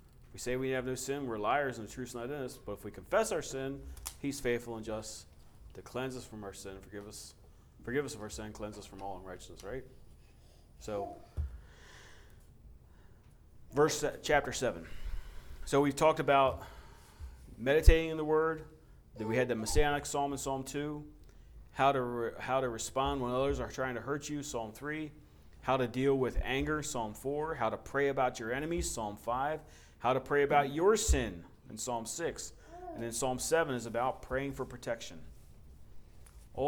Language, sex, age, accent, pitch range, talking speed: English, male, 30-49, American, 100-140 Hz, 185 wpm